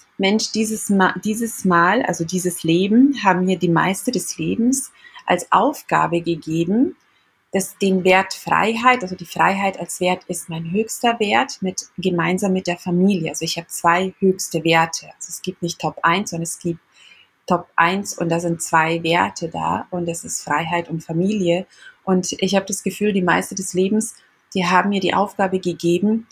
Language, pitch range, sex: German, 170-200 Hz, female